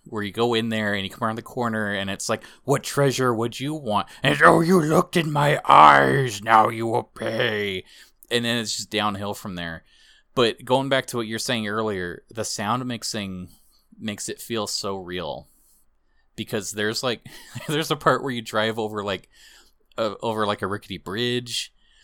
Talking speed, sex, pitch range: 190 wpm, male, 105-125 Hz